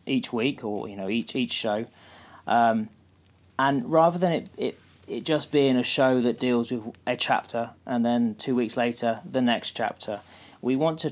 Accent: British